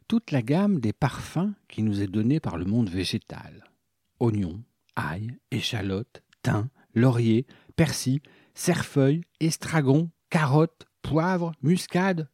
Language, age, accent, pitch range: French, 50-69, French, 105-155 Hz